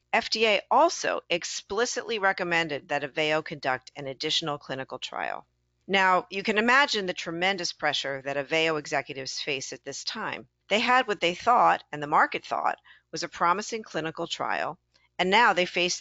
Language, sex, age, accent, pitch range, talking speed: English, female, 50-69, American, 145-200 Hz, 160 wpm